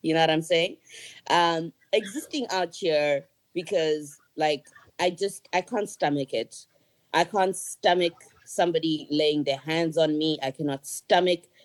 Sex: female